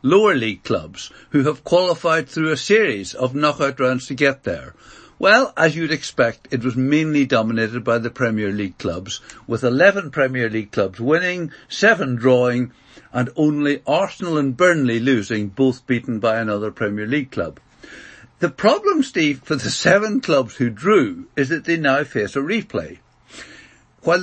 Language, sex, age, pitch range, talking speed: English, male, 60-79, 125-155 Hz, 165 wpm